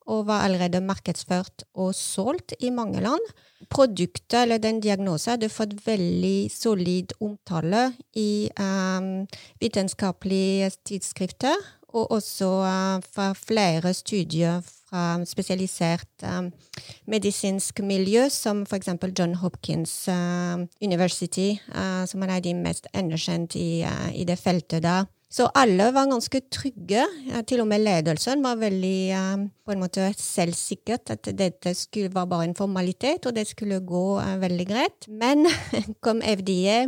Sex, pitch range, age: female, 180-220 Hz, 30-49